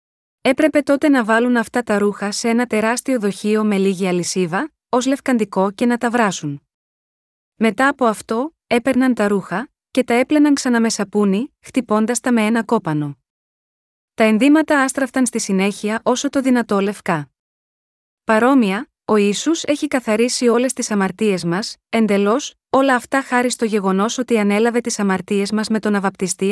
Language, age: Greek, 20-39